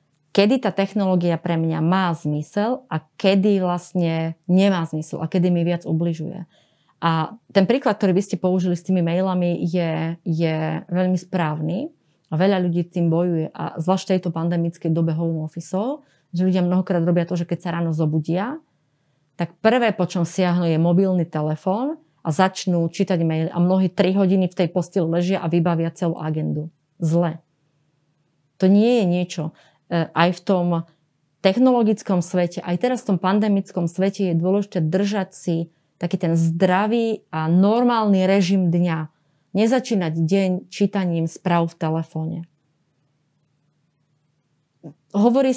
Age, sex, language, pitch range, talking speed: 30-49, female, Slovak, 160-190 Hz, 145 wpm